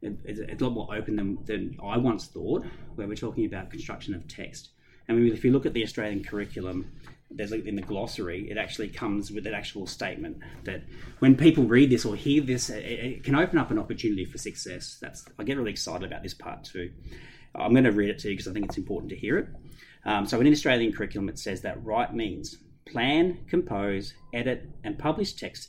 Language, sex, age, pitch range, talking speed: English, male, 30-49, 100-130 Hz, 220 wpm